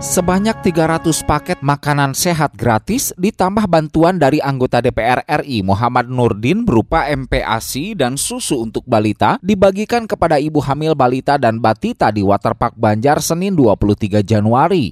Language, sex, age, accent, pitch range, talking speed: Indonesian, male, 20-39, native, 125-170 Hz, 135 wpm